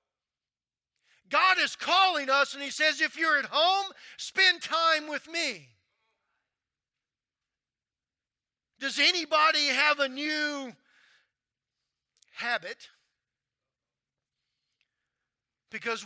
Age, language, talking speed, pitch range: 50-69, English, 80 wpm, 230-300 Hz